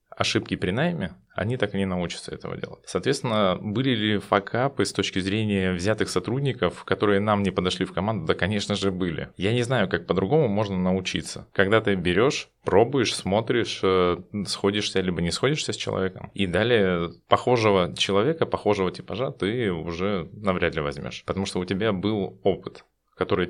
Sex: male